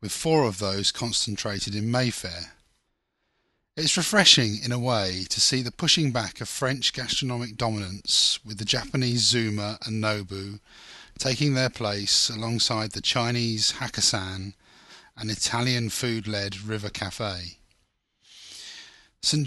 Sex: male